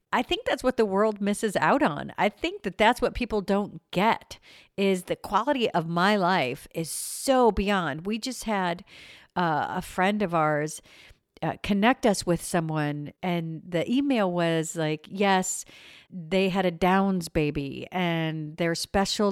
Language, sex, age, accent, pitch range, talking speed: English, female, 50-69, American, 165-200 Hz, 165 wpm